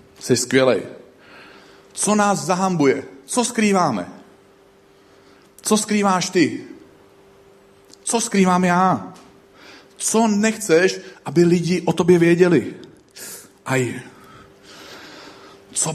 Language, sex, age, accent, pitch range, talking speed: Czech, male, 40-59, native, 115-170 Hz, 75 wpm